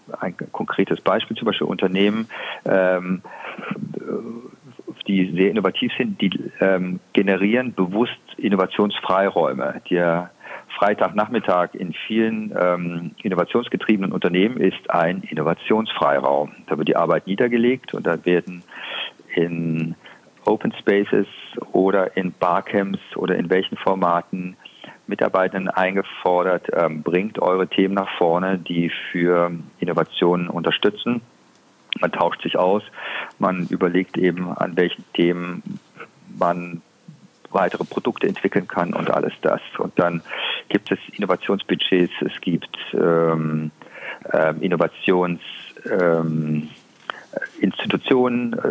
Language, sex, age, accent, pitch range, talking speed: German, male, 40-59, German, 85-95 Hz, 105 wpm